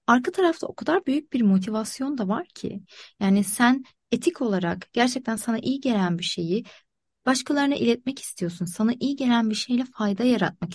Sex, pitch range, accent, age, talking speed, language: female, 215-305 Hz, native, 30-49, 165 wpm, Turkish